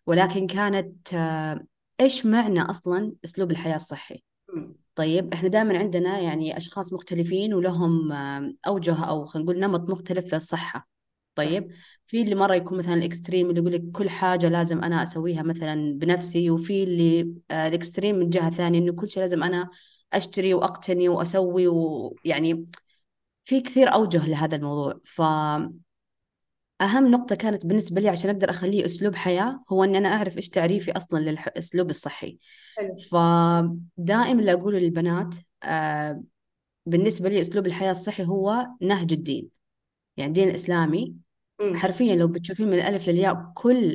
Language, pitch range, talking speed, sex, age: Arabic, 170-195 Hz, 140 wpm, female, 20-39